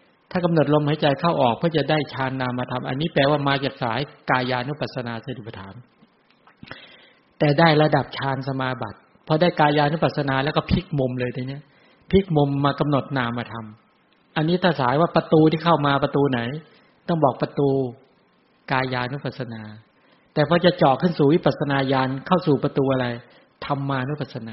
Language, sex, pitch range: English, male, 130-155 Hz